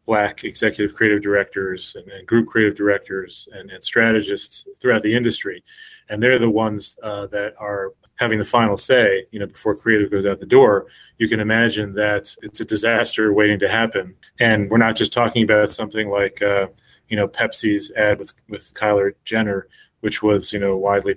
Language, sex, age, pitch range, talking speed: English, male, 30-49, 100-120 Hz, 185 wpm